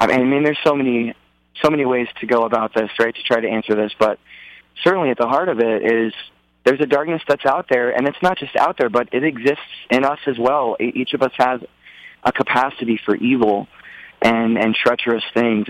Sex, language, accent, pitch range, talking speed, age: male, English, American, 110-135 Hz, 220 wpm, 20-39